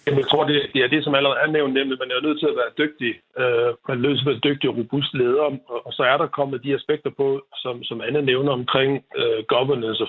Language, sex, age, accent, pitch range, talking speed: Danish, male, 60-79, native, 125-155 Hz, 225 wpm